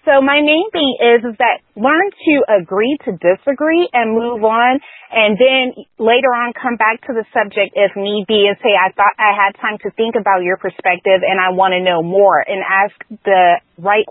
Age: 30-49